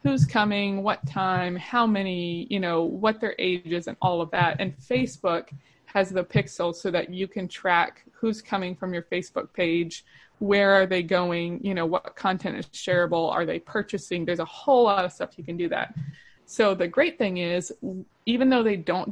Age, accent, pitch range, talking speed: 20-39, American, 175-210 Hz, 200 wpm